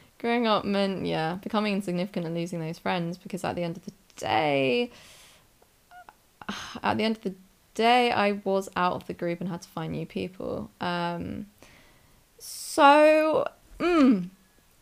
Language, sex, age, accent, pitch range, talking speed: English, female, 20-39, British, 170-230 Hz, 155 wpm